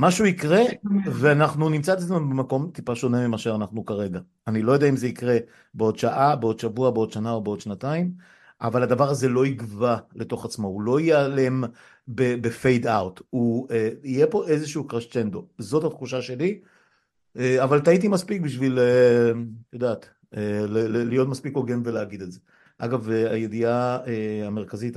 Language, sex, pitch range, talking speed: Hebrew, male, 110-130 Hz, 160 wpm